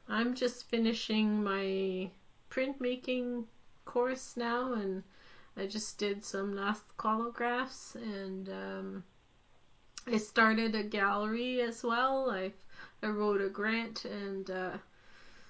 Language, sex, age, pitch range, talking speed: English, female, 30-49, 195-225 Hz, 110 wpm